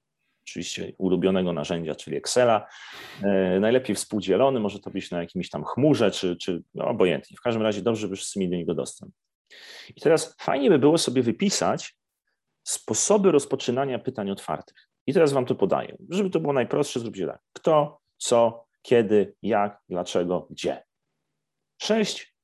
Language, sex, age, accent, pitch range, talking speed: Polish, male, 40-59, native, 100-130 Hz, 150 wpm